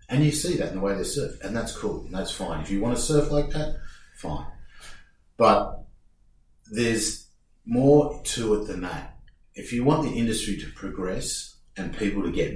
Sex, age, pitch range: male, 40-59, 85-110 Hz